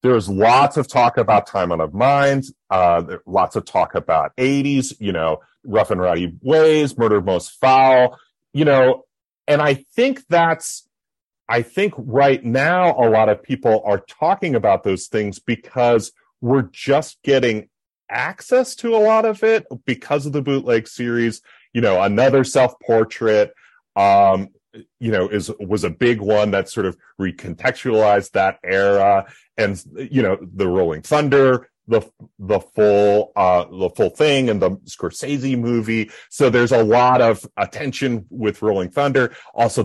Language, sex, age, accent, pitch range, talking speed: English, male, 40-59, American, 110-140 Hz, 155 wpm